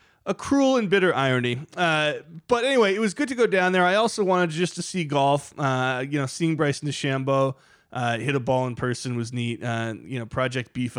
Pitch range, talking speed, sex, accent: 120-170 Hz, 225 wpm, male, American